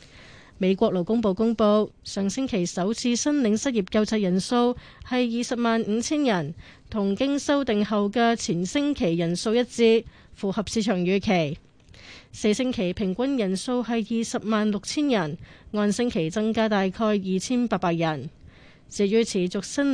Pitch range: 195-240 Hz